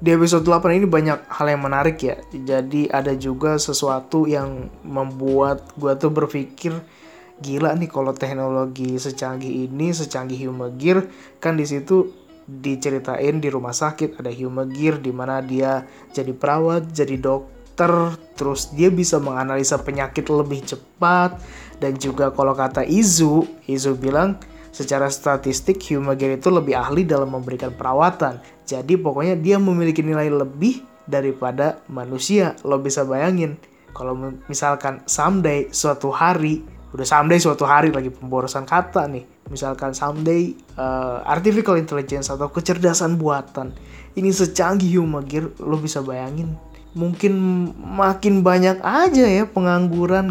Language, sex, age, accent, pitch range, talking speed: Indonesian, male, 20-39, native, 135-170 Hz, 130 wpm